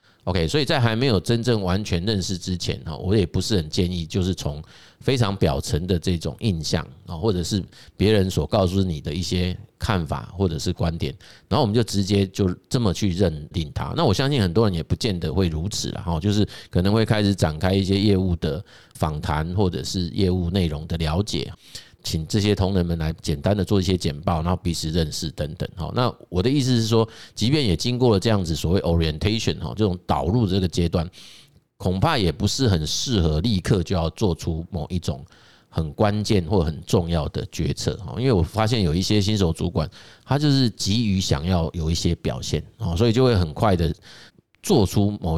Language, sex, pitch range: Chinese, male, 85-110 Hz